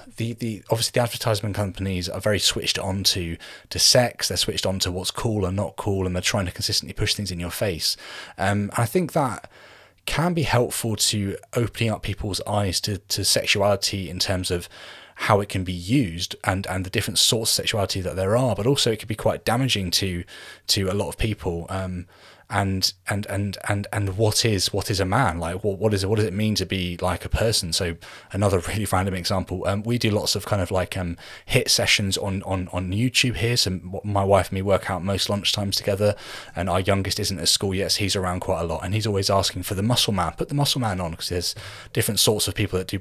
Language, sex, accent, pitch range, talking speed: English, male, British, 95-110 Hz, 240 wpm